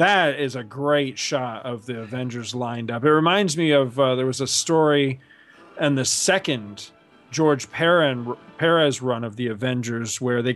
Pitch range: 120-155 Hz